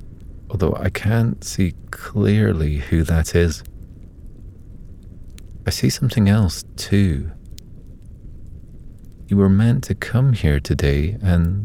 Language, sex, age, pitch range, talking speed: English, male, 40-59, 80-100 Hz, 110 wpm